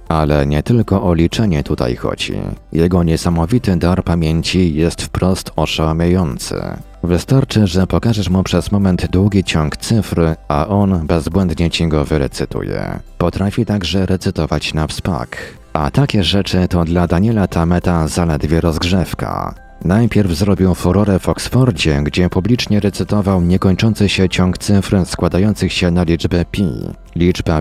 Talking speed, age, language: 135 wpm, 40-59, Polish